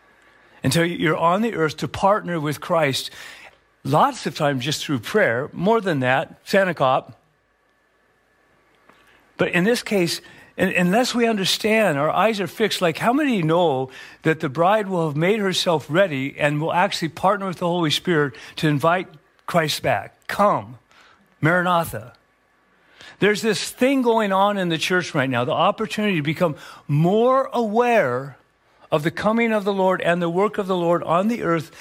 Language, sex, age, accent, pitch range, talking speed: English, male, 50-69, American, 150-195 Hz, 165 wpm